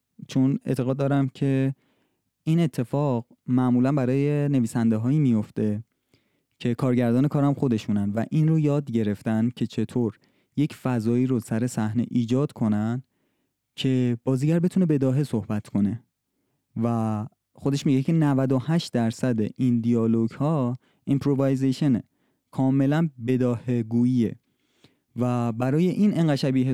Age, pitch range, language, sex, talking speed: 20-39, 120-145 Hz, Persian, male, 115 wpm